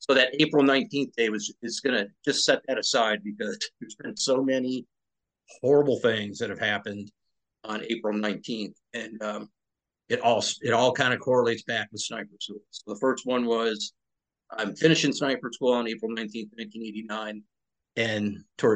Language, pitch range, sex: English, 105-120 Hz, male